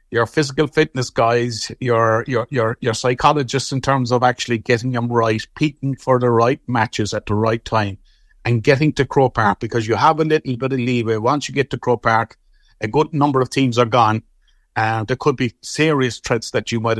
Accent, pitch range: Irish, 110-130 Hz